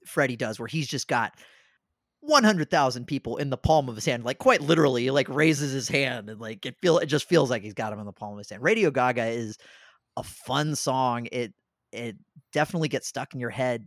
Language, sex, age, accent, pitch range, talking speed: English, male, 30-49, American, 120-155 Hz, 225 wpm